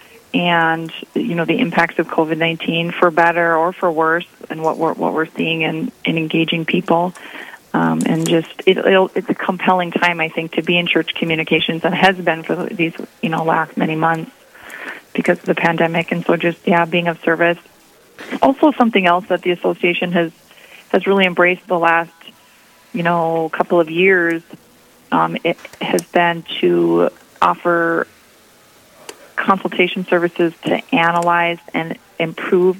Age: 30-49